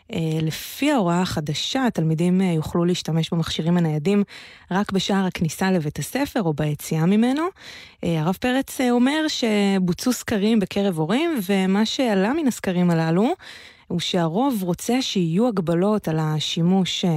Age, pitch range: 20-39, 160-205 Hz